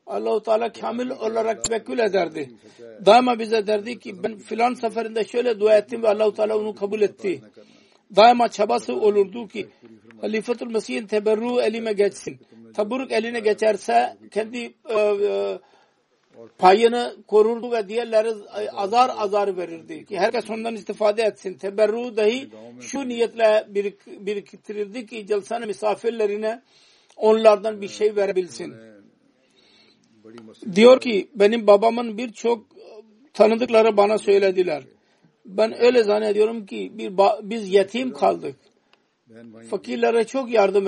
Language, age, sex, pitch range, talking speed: Turkish, 60-79, male, 200-230 Hz, 120 wpm